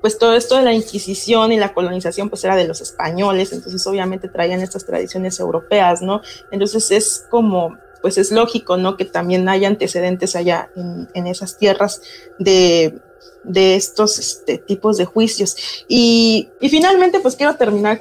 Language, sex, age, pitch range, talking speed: Spanish, female, 30-49, 195-250 Hz, 165 wpm